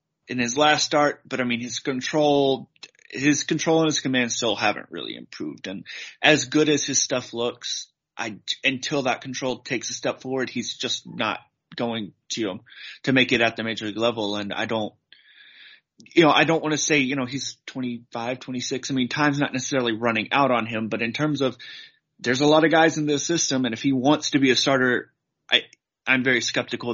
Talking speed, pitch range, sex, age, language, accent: 210 wpm, 115-145 Hz, male, 30-49, English, American